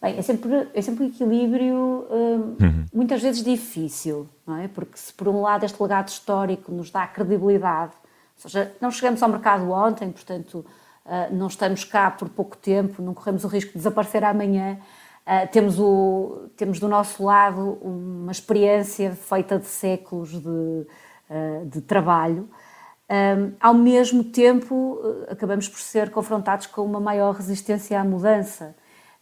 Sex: female